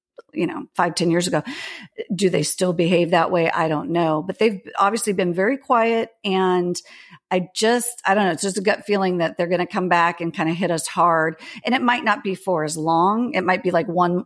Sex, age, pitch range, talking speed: female, 50-69, 165-200 Hz, 240 wpm